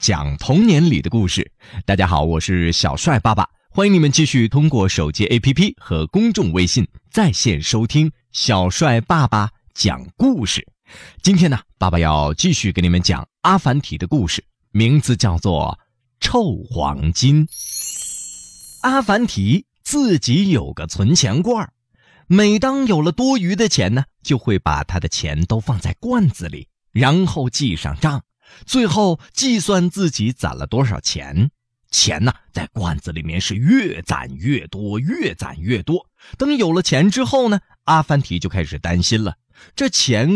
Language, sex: Chinese, male